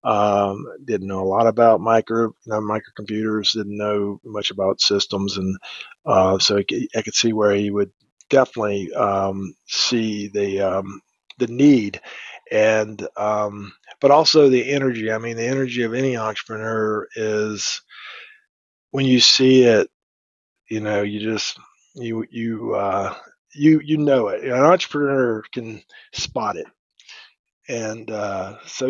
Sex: male